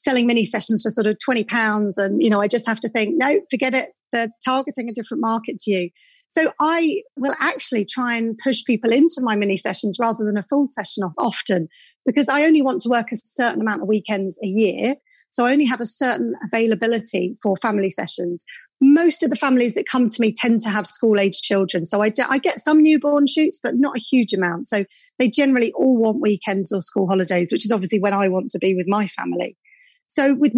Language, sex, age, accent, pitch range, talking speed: English, female, 30-49, British, 210-275 Hz, 225 wpm